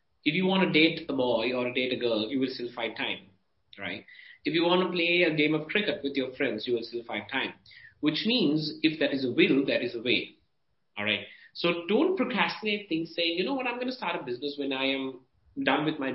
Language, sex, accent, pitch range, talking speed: English, male, Indian, 140-210 Hz, 255 wpm